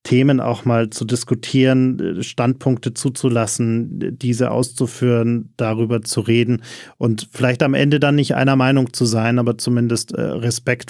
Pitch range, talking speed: 115-130 Hz, 140 wpm